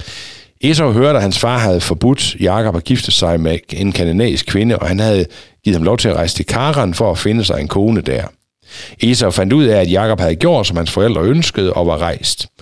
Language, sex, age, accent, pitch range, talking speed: Danish, male, 60-79, native, 90-125 Hz, 230 wpm